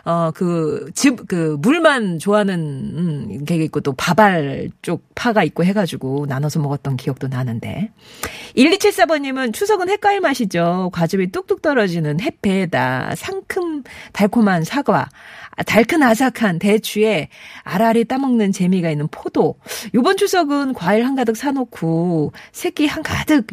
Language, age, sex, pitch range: Korean, 40-59, female, 165-265 Hz